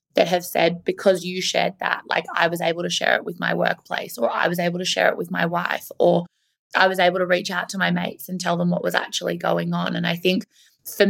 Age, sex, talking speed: 20-39, female, 265 wpm